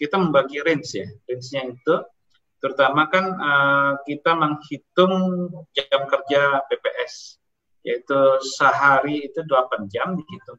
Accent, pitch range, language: native, 135-180 Hz, Indonesian